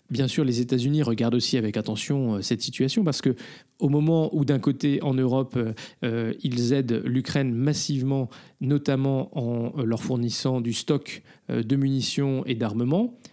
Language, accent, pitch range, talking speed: French, French, 120-145 Hz, 165 wpm